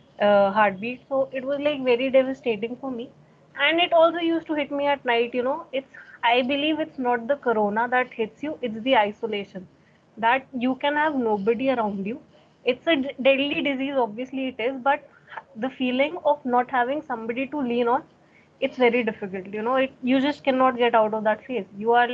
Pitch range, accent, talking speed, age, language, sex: 230-270 Hz, Indian, 205 wpm, 20-39, English, female